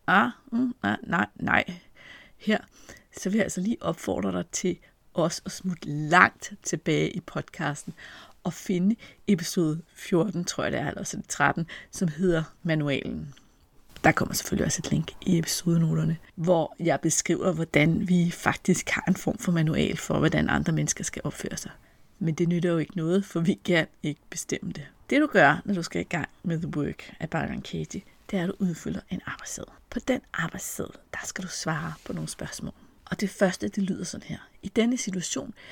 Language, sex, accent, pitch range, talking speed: Danish, female, native, 165-200 Hz, 195 wpm